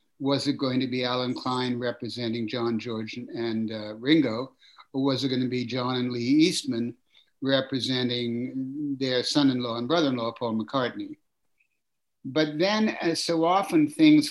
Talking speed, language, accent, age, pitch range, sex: 145 wpm, English, American, 60-79, 120-150 Hz, male